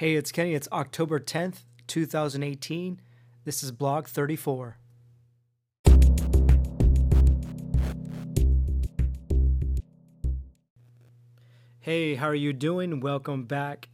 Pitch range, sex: 120-145 Hz, male